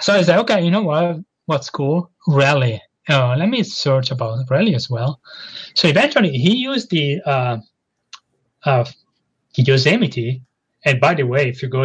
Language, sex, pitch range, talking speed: English, male, 130-165 Hz, 175 wpm